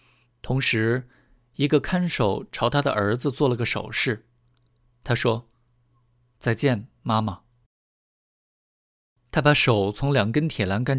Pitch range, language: 120-140 Hz, Chinese